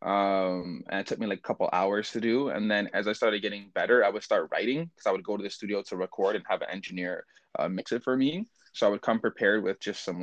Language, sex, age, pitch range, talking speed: English, male, 20-39, 105-125 Hz, 280 wpm